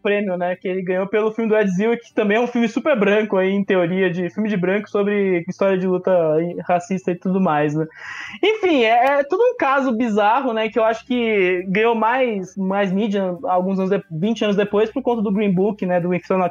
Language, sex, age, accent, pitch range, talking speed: English, male, 20-39, Brazilian, 195-260 Hz, 225 wpm